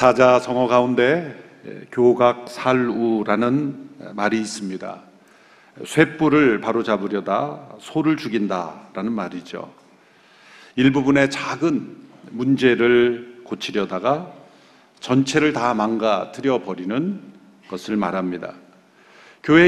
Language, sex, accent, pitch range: Korean, male, native, 110-145 Hz